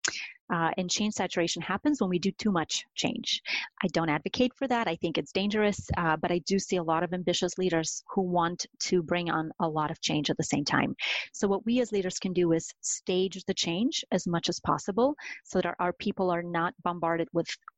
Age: 30-49